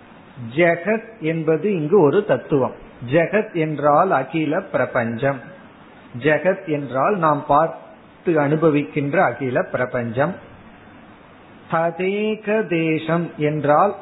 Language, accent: Tamil, native